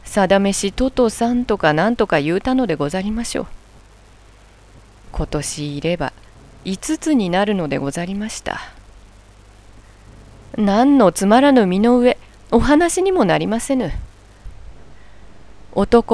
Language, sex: Japanese, female